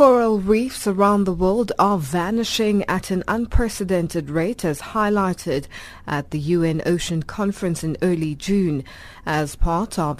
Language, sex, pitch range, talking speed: English, female, 160-215 Hz, 140 wpm